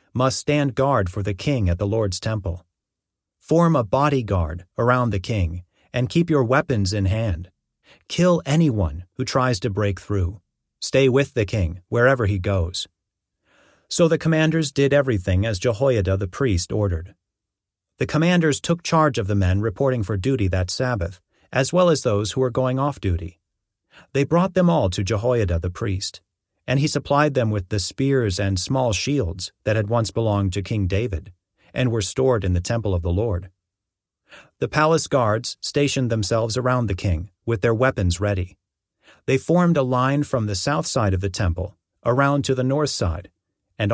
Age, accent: 40-59, American